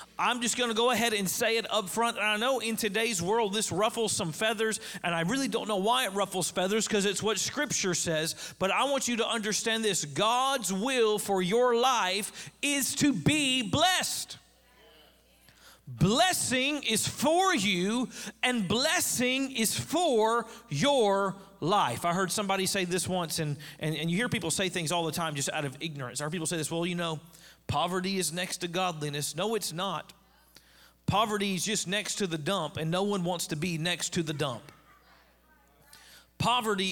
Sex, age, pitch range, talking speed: male, 40-59, 165-220 Hz, 190 wpm